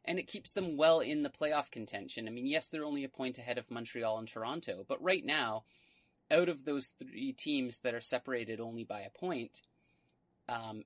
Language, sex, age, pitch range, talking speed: English, male, 30-49, 120-155 Hz, 205 wpm